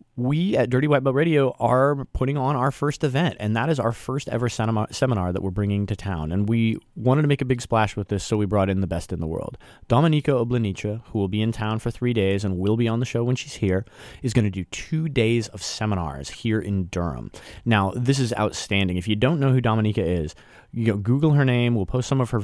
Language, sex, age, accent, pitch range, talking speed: English, male, 30-49, American, 100-120 Hz, 255 wpm